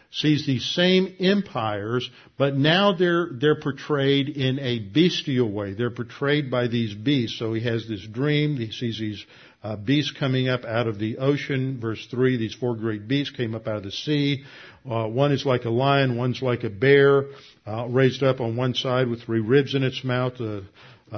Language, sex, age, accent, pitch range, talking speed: English, male, 50-69, American, 120-140 Hz, 200 wpm